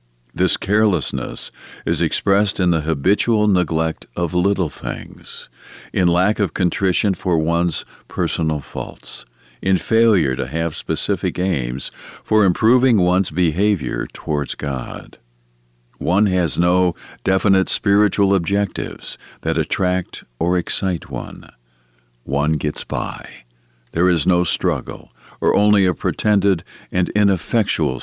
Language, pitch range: English, 75-100 Hz